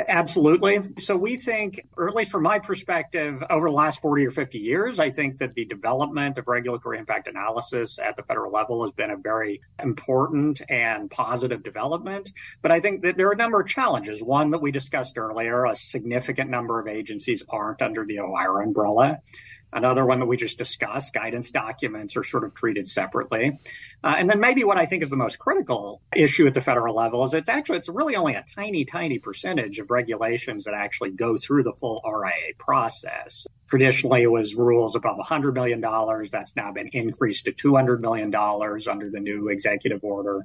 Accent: American